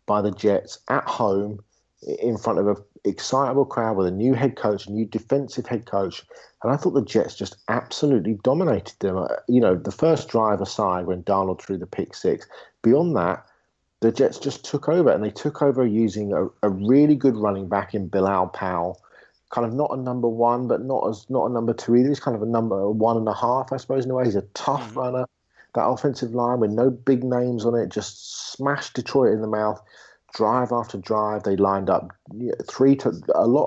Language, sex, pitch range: English, male, 100-125 Hz